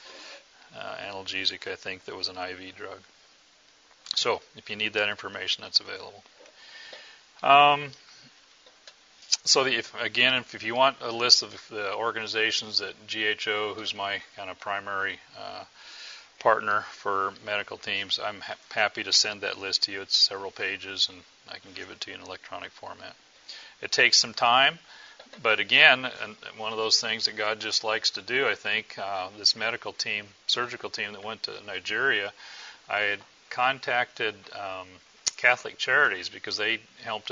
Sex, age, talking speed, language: male, 40-59, 160 wpm, English